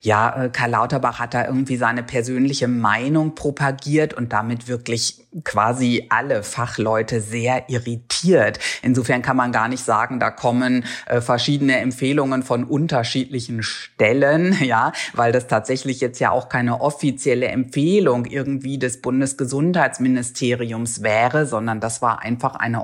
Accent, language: German, German